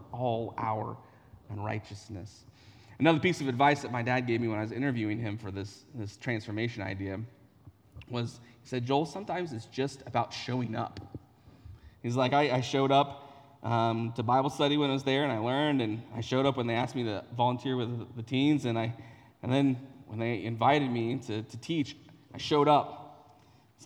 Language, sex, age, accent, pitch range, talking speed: English, male, 30-49, American, 115-150 Hz, 195 wpm